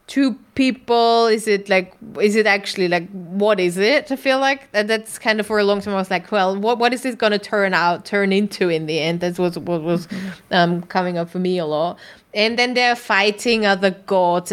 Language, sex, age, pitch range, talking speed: English, female, 20-39, 185-225 Hz, 230 wpm